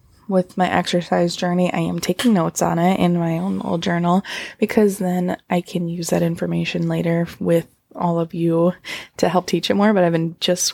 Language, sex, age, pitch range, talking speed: English, female, 20-39, 170-195 Hz, 200 wpm